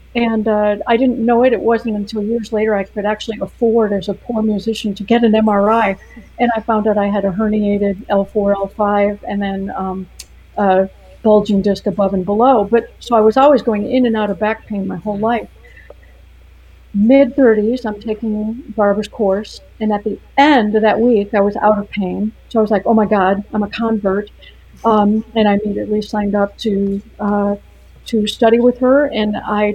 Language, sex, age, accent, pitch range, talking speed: English, female, 50-69, American, 205-235 Hz, 205 wpm